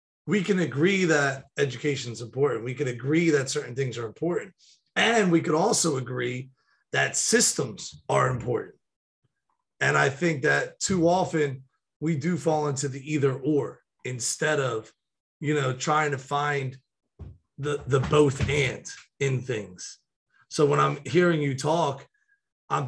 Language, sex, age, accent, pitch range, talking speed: English, male, 30-49, American, 135-165 Hz, 150 wpm